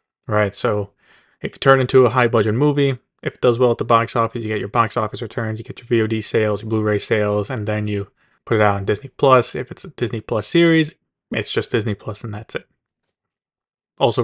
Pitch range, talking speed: 110-130 Hz, 230 wpm